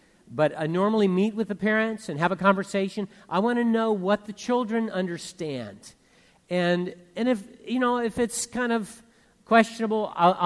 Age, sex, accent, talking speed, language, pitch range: 50-69, male, American, 170 wpm, English, 135-190 Hz